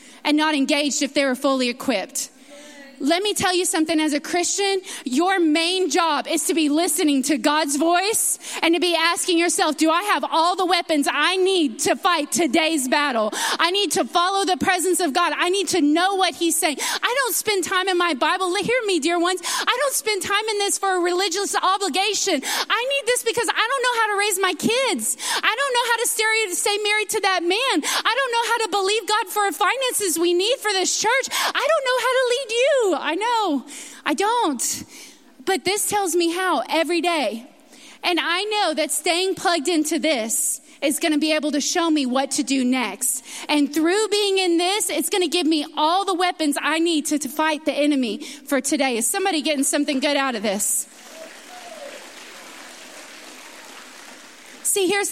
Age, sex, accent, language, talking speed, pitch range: 30-49, female, American, English, 200 wpm, 290-375 Hz